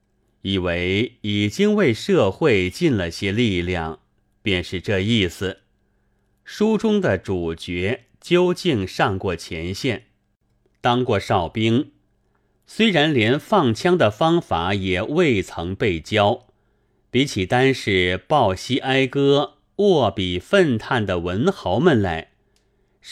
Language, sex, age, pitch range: Chinese, male, 30-49, 95-135 Hz